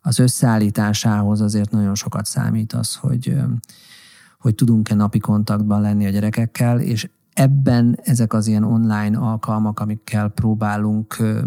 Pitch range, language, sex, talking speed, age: 105-115 Hz, Hungarian, male, 125 wpm, 40-59